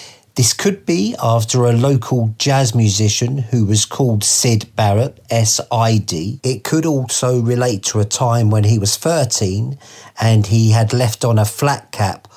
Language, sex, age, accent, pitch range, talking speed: English, male, 40-59, British, 110-125 Hz, 160 wpm